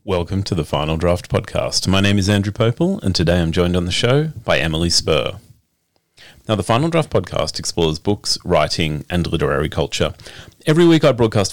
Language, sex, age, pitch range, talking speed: English, male, 30-49, 85-120 Hz, 185 wpm